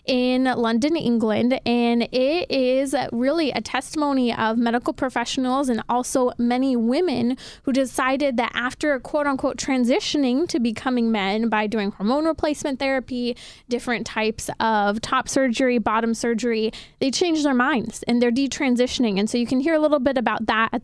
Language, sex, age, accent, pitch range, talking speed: English, female, 20-39, American, 235-290 Hz, 160 wpm